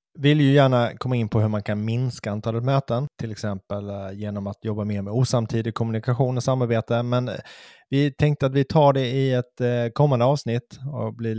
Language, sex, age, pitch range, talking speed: Swedish, male, 20-39, 100-125 Hz, 190 wpm